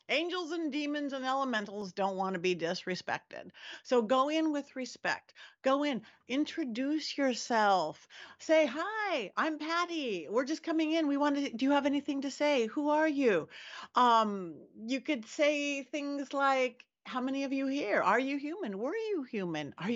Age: 50-69